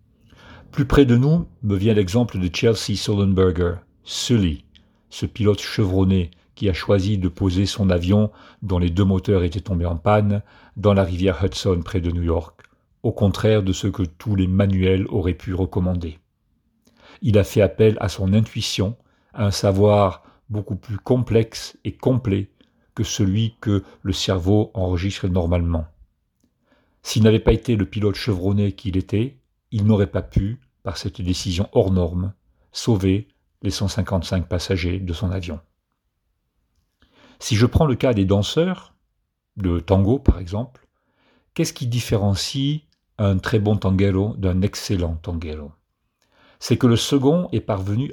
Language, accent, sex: English, French, male